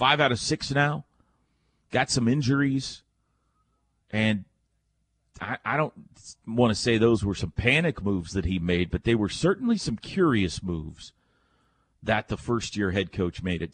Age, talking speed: 40-59, 160 wpm